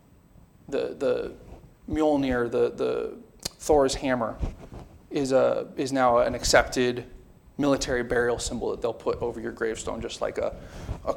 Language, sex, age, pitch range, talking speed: English, male, 30-49, 125-145 Hz, 140 wpm